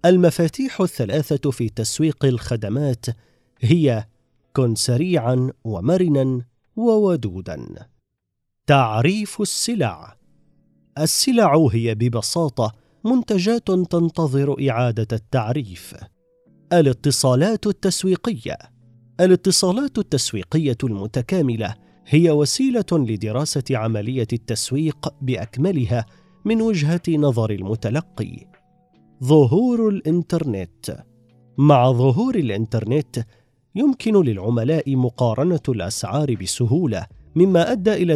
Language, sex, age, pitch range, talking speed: Arabic, male, 40-59, 120-165 Hz, 75 wpm